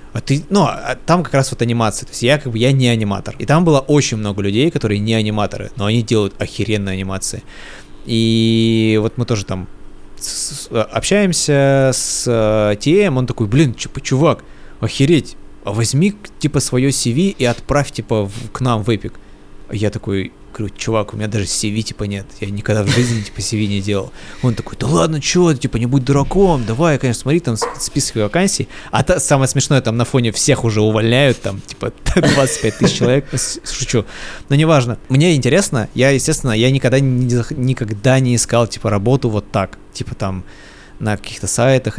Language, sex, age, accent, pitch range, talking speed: Russian, male, 20-39, native, 105-135 Hz, 170 wpm